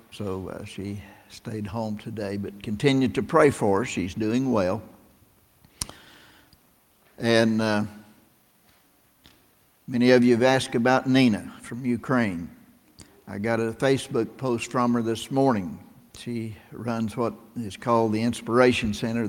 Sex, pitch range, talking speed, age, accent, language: male, 105-120 Hz, 135 wpm, 60-79, American, English